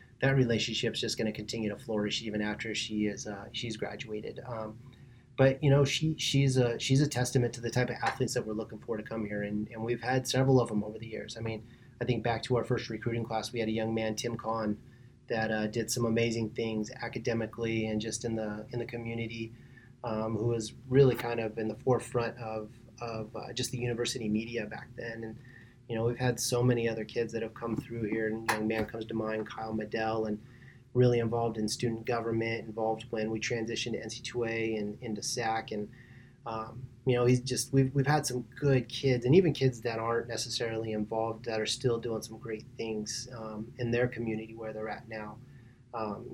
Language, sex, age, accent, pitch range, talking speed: English, male, 30-49, American, 110-125 Hz, 220 wpm